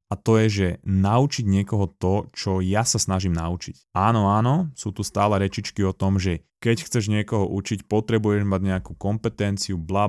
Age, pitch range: 20-39, 95-115 Hz